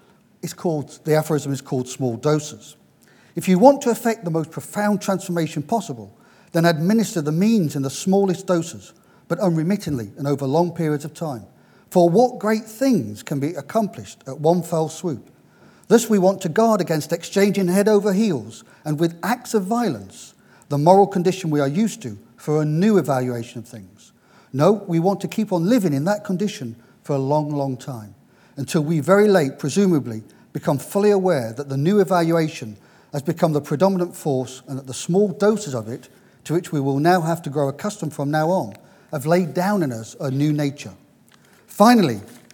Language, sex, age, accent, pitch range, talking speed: English, male, 40-59, British, 140-195 Hz, 190 wpm